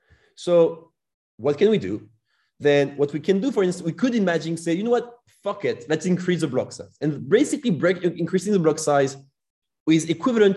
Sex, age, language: male, 30-49, French